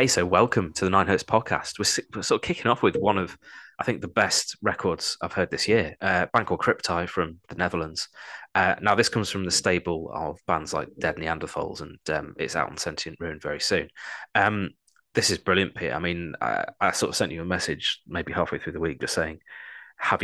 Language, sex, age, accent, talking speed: English, male, 20-39, British, 220 wpm